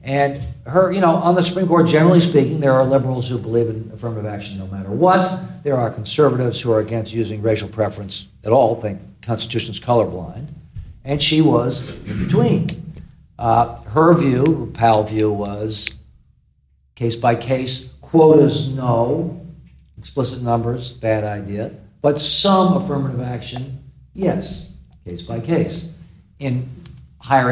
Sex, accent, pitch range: male, American, 110-140 Hz